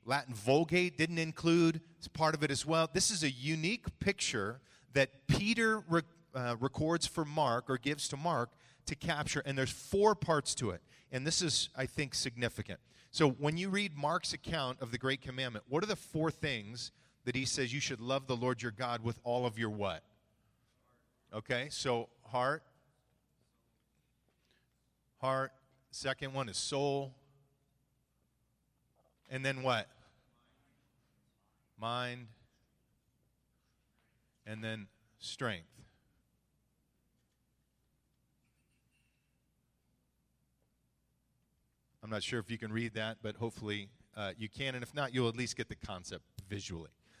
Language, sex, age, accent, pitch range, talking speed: English, male, 40-59, American, 115-150 Hz, 135 wpm